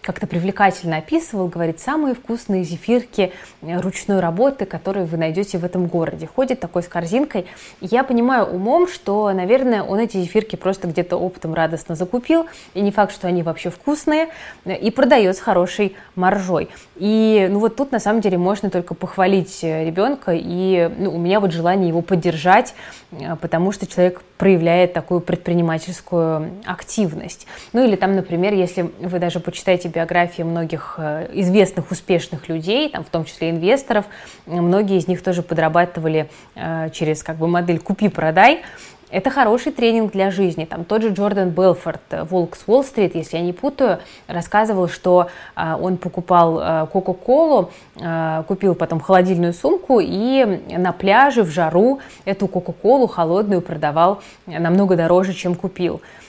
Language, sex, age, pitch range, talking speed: Russian, female, 20-39, 170-205 Hz, 145 wpm